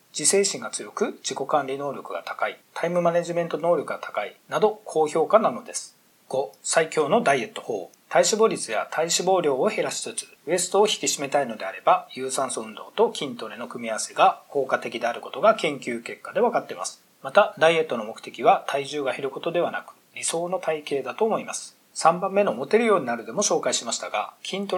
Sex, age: male, 40-59